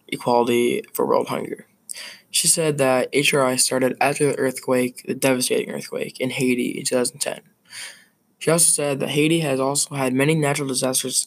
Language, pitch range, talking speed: English, 130-150 Hz, 160 wpm